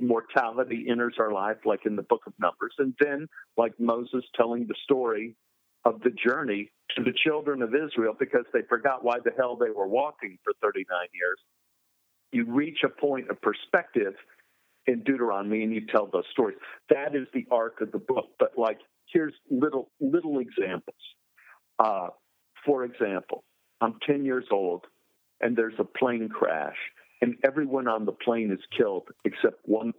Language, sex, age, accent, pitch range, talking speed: English, male, 50-69, American, 110-145 Hz, 170 wpm